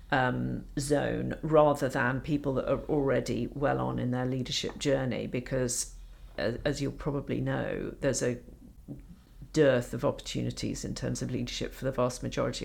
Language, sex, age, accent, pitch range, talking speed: English, female, 50-69, British, 115-140 Hz, 155 wpm